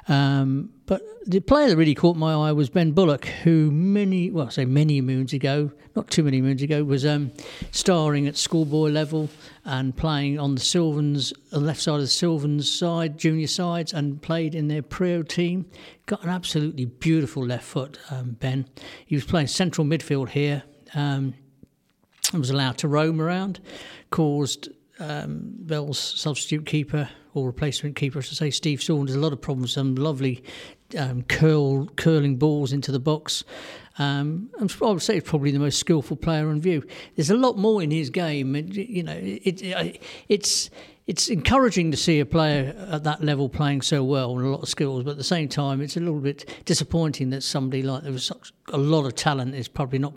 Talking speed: 195 wpm